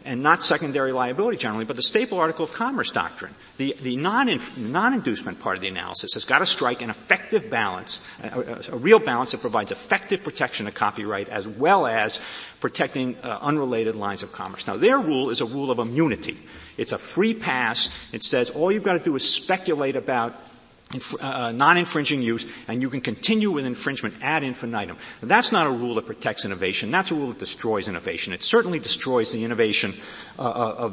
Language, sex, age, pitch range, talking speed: English, male, 50-69, 115-165 Hz, 190 wpm